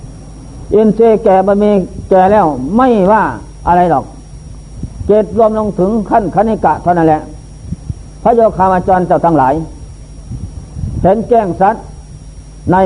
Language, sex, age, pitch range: Thai, male, 50-69, 170-220 Hz